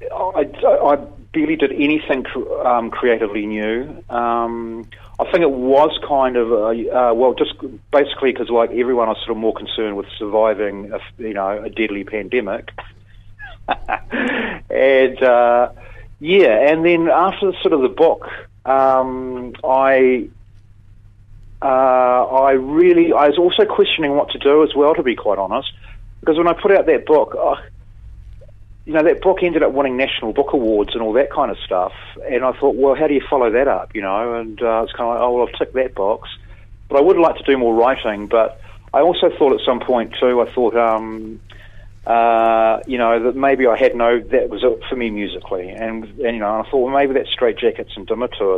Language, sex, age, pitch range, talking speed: English, male, 40-59, 105-140 Hz, 195 wpm